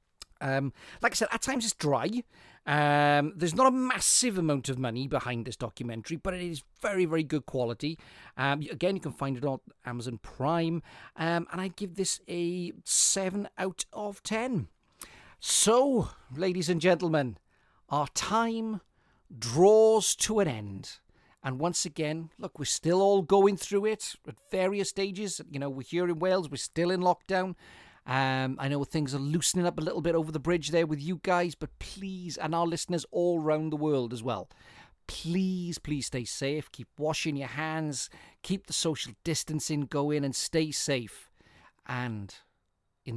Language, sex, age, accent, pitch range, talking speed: English, male, 40-59, British, 130-180 Hz, 170 wpm